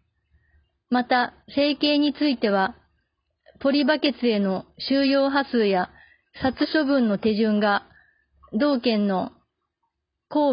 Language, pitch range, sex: Japanese, 220-275 Hz, female